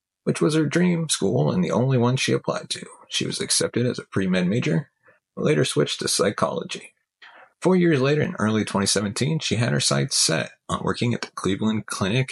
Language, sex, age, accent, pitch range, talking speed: English, male, 30-49, American, 95-155 Hz, 200 wpm